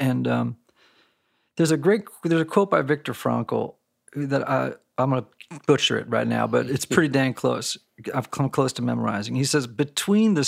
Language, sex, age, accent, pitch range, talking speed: English, male, 40-59, American, 120-165 Hz, 195 wpm